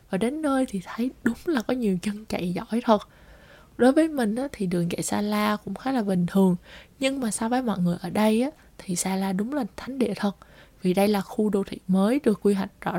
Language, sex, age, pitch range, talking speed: Vietnamese, female, 20-39, 185-235 Hz, 245 wpm